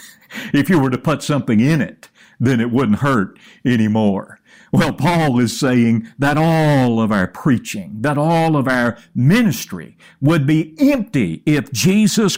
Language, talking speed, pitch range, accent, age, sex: English, 155 wpm, 110-175 Hz, American, 60-79, male